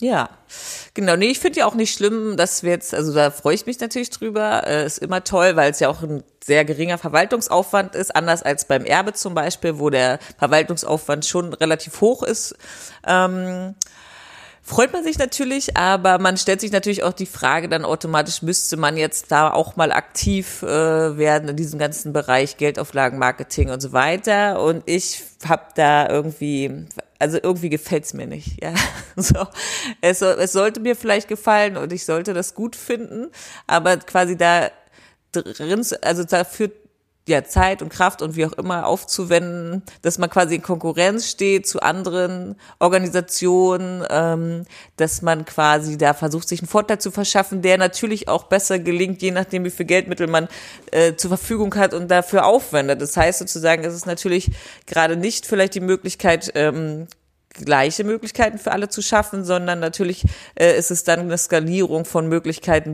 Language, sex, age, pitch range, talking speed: German, female, 30-49, 160-195 Hz, 175 wpm